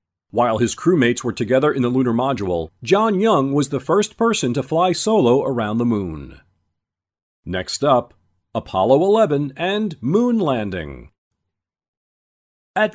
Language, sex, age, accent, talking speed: English, male, 40-59, American, 135 wpm